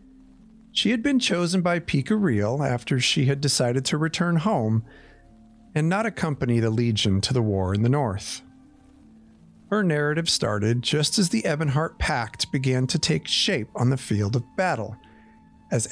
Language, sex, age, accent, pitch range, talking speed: English, male, 50-69, American, 110-160 Hz, 160 wpm